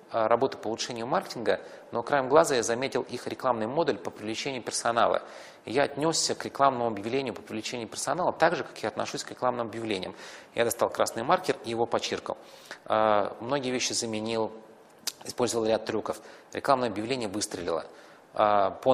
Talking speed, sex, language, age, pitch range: 150 wpm, male, Russian, 30-49, 110-130 Hz